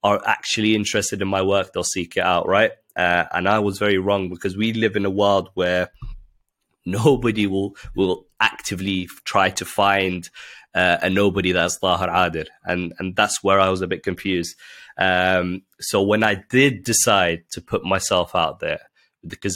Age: 20-39